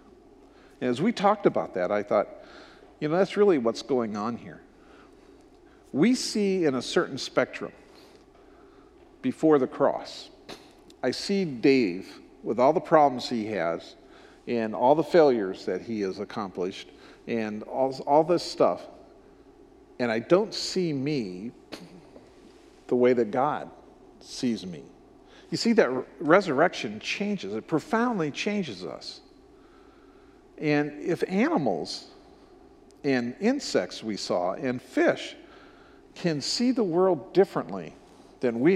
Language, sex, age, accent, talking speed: English, male, 50-69, American, 130 wpm